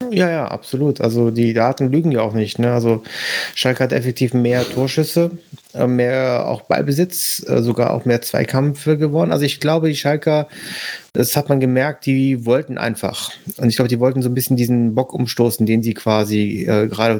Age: 30-49